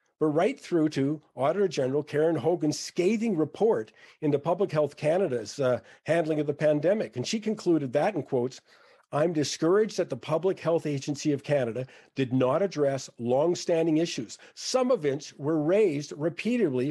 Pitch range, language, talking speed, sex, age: 135-175 Hz, English, 165 wpm, male, 50-69